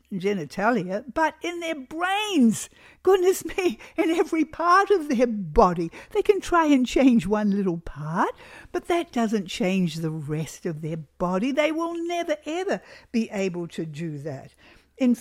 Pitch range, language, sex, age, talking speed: 195-290 Hz, English, female, 60-79, 160 wpm